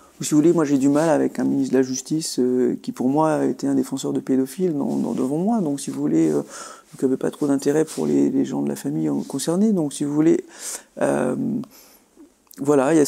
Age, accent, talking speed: 40-59, French, 230 wpm